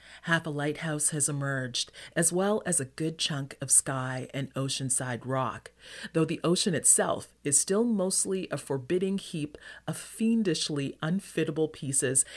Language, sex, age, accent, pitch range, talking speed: English, female, 40-59, American, 130-180 Hz, 145 wpm